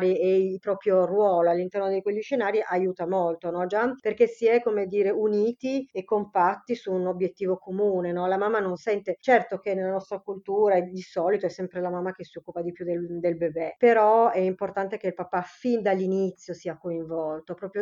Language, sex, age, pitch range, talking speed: Italian, female, 30-49, 180-220 Hz, 200 wpm